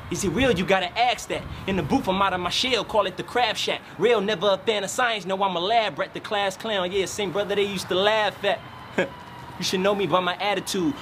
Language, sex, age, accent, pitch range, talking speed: English, male, 20-39, American, 185-220 Hz, 270 wpm